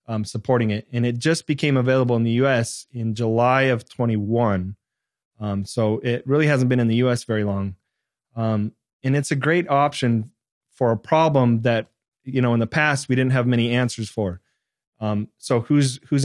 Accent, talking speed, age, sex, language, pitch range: American, 190 wpm, 30-49, male, English, 115-135 Hz